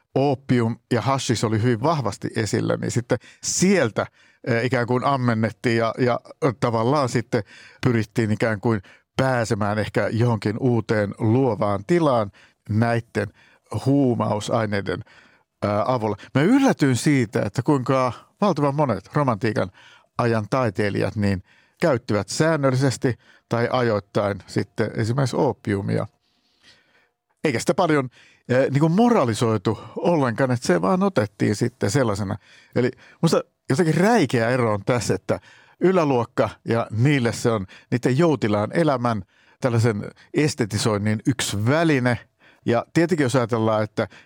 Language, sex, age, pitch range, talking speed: Finnish, male, 50-69, 110-135 Hz, 115 wpm